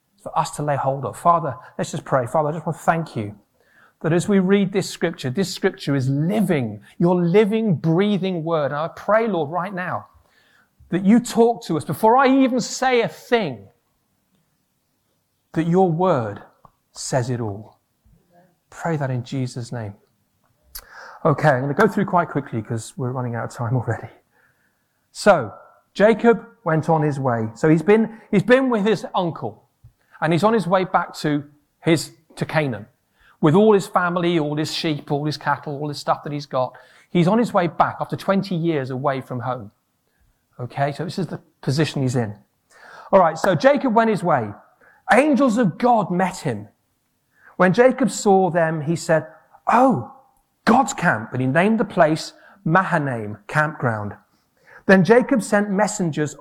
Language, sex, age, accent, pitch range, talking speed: English, male, 40-59, British, 130-190 Hz, 175 wpm